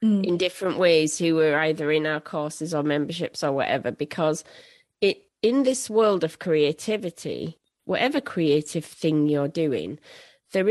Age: 30-49